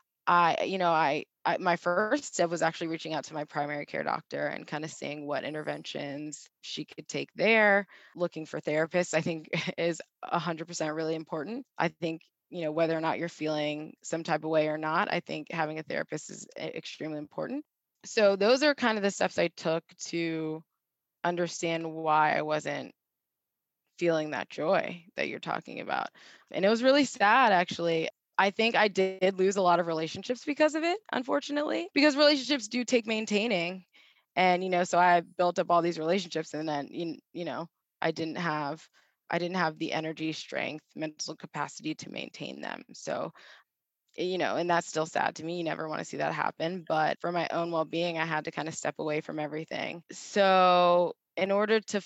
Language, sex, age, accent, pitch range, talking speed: English, female, 20-39, American, 160-190 Hz, 195 wpm